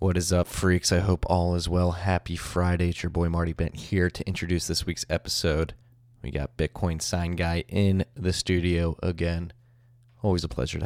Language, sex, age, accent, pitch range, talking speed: English, male, 20-39, American, 85-115 Hz, 195 wpm